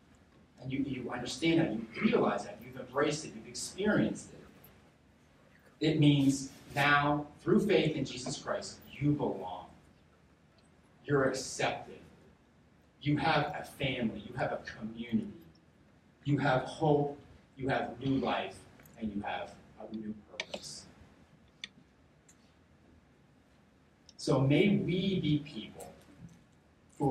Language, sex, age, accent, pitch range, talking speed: English, male, 40-59, American, 100-145 Hz, 115 wpm